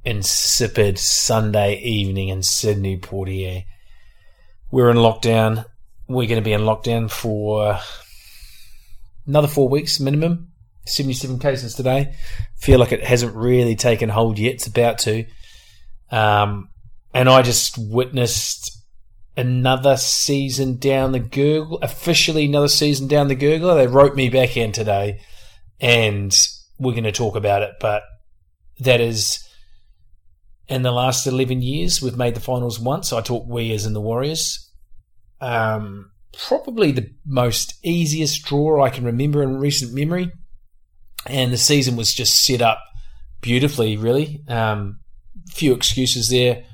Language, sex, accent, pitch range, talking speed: English, male, Australian, 105-130 Hz, 140 wpm